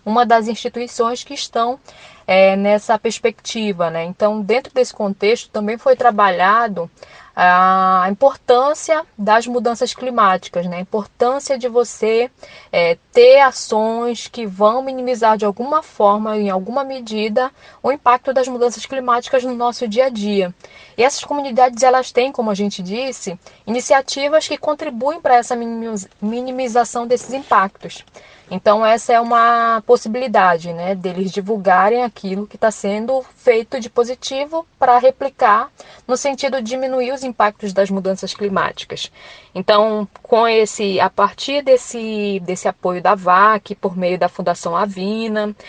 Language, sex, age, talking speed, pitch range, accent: Portuguese, female, 10-29, 135 wpm, 200-250 Hz, Brazilian